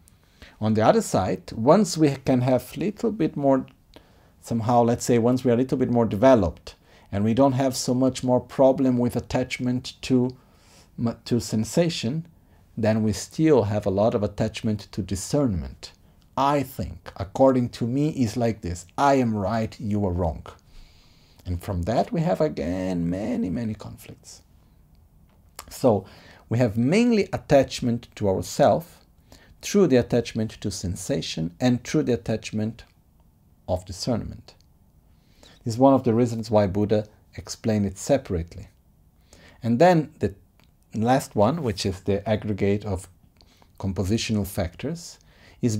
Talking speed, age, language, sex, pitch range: 145 wpm, 50-69, Italian, male, 90-125 Hz